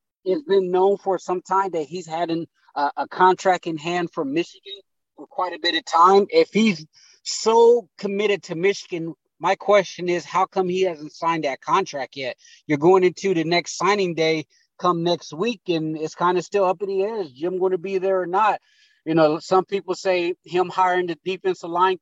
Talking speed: 205 wpm